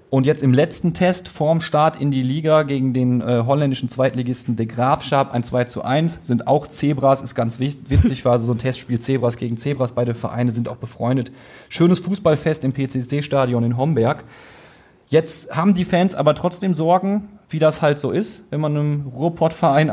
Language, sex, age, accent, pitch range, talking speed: German, male, 30-49, German, 125-160 Hz, 185 wpm